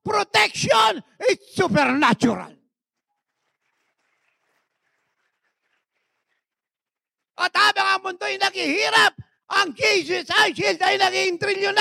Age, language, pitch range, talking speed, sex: 50-69, English, 340-410 Hz, 65 wpm, male